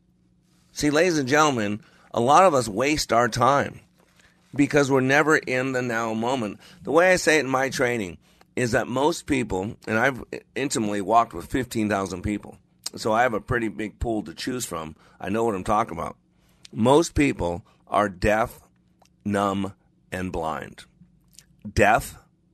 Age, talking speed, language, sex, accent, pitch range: 50-69, 160 wpm, English, male, American, 95-120 Hz